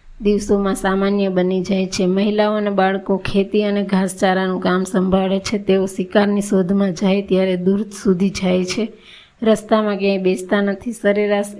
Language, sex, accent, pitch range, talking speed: Gujarati, female, native, 190-210 Hz, 140 wpm